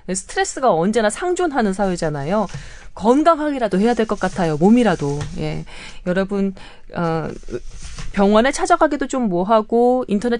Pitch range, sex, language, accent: 160-240 Hz, female, Korean, native